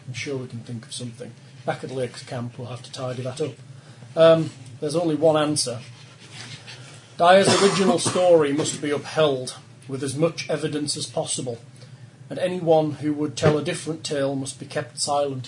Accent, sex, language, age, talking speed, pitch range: British, male, English, 30-49, 180 wpm, 130-155 Hz